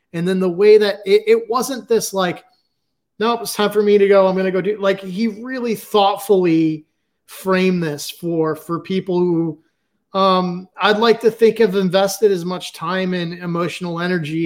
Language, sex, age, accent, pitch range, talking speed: English, male, 30-49, American, 155-195 Hz, 190 wpm